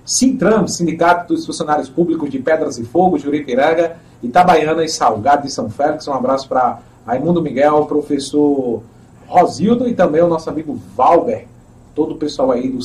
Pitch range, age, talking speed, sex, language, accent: 135-175 Hz, 40-59, 165 wpm, male, Portuguese, Brazilian